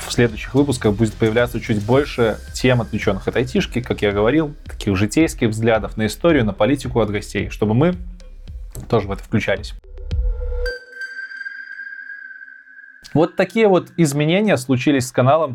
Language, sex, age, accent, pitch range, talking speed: Russian, male, 20-39, native, 105-130 Hz, 140 wpm